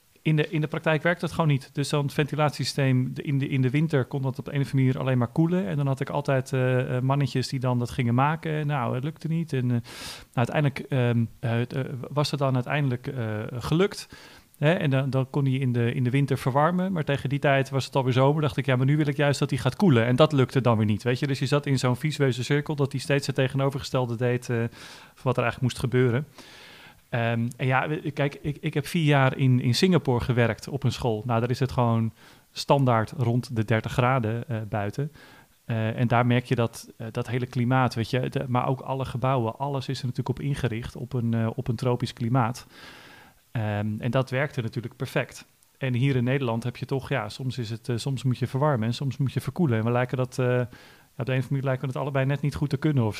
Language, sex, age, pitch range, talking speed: Dutch, male, 40-59, 120-140 Hz, 250 wpm